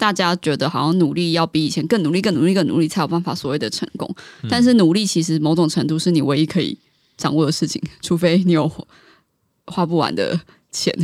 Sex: female